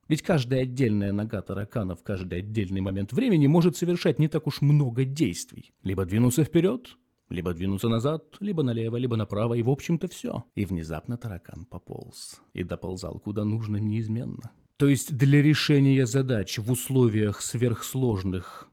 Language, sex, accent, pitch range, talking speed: Russian, male, native, 100-135 Hz, 155 wpm